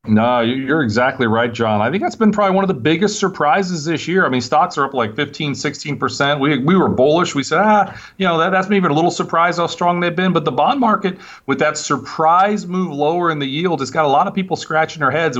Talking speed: 255 wpm